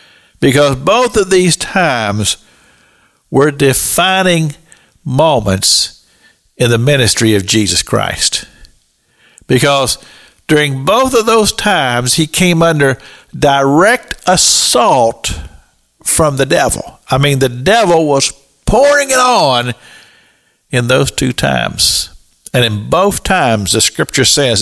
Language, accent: English, American